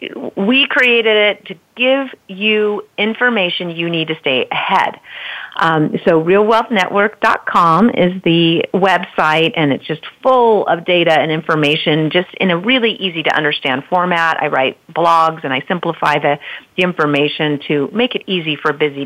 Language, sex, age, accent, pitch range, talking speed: English, female, 40-59, American, 150-195 Hz, 150 wpm